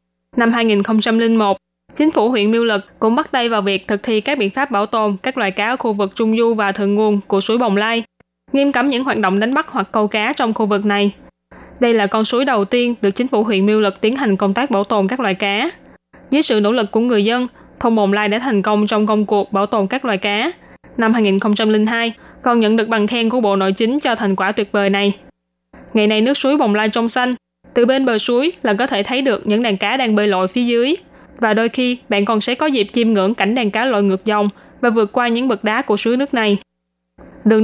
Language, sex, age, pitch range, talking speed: Vietnamese, female, 20-39, 205-245 Hz, 255 wpm